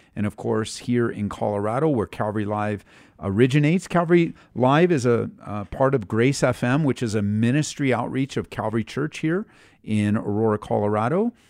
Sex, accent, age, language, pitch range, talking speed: male, American, 50-69, English, 95-125 Hz, 160 wpm